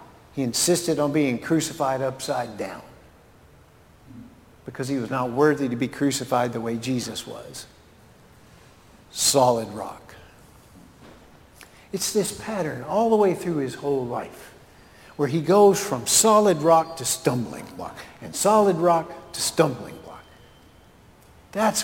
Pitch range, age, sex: 140-200 Hz, 50-69, male